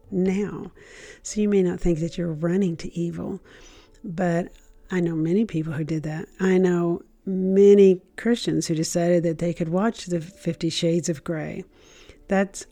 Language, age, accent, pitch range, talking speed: English, 50-69, American, 170-195 Hz, 165 wpm